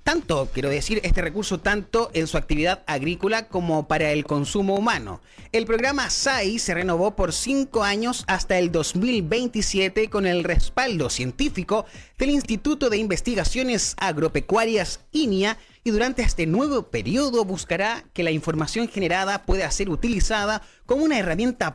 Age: 30-49